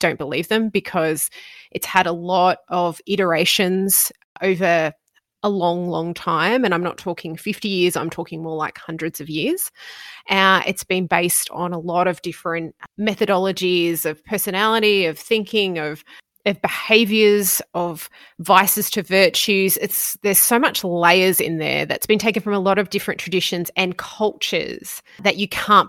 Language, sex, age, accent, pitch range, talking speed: English, female, 20-39, Australian, 170-210 Hz, 160 wpm